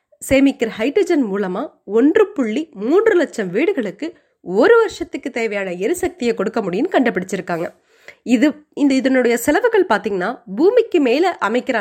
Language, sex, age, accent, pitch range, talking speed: Tamil, female, 20-39, native, 210-345 Hz, 115 wpm